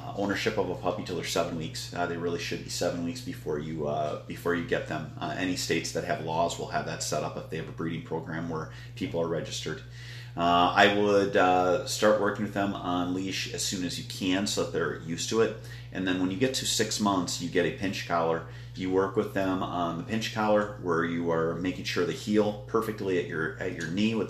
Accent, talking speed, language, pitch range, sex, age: American, 245 wpm, English, 90-120 Hz, male, 30-49